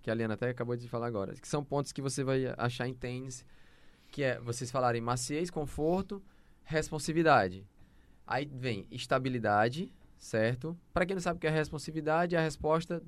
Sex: male